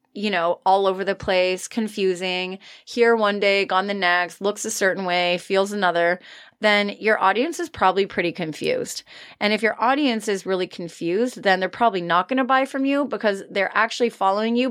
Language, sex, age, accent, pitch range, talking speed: English, female, 20-39, American, 190-240 Hz, 190 wpm